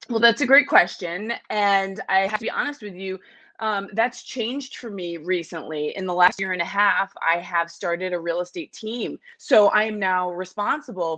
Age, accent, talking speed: 20-39, American, 205 wpm